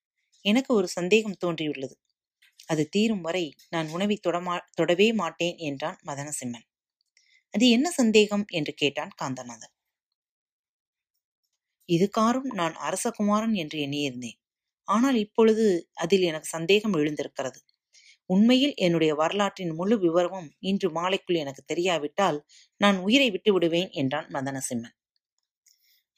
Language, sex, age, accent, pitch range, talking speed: Tamil, female, 30-49, native, 160-210 Hz, 110 wpm